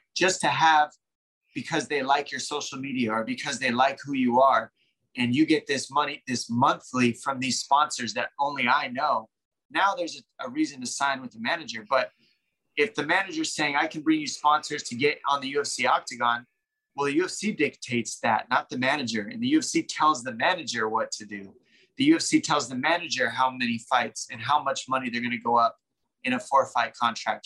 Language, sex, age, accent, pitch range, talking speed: English, male, 20-39, American, 125-160 Hz, 205 wpm